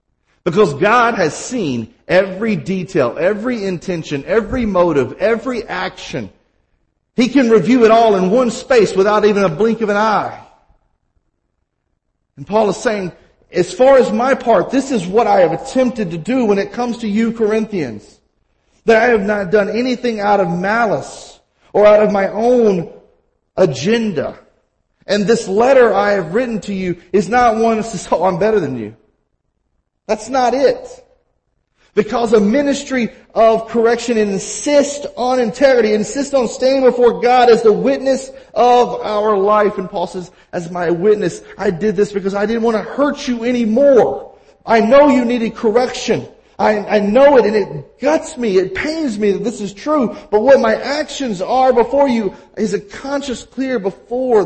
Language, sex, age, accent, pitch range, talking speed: English, male, 40-59, American, 200-250 Hz, 170 wpm